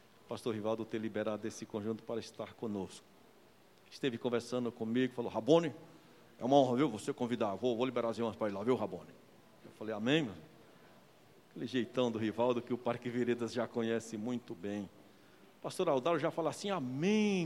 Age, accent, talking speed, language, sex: 60-79, Brazilian, 180 wpm, Portuguese, male